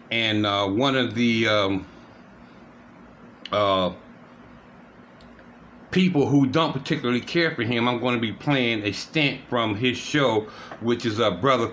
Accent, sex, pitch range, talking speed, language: American, male, 100-125 Hz, 150 wpm, English